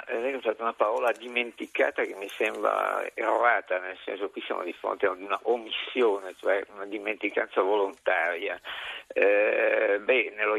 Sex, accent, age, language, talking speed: male, native, 50-69, Italian, 135 wpm